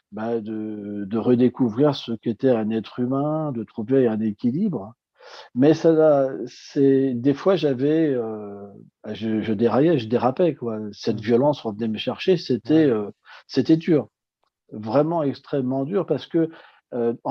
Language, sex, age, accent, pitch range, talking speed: French, male, 40-59, French, 115-150 Hz, 140 wpm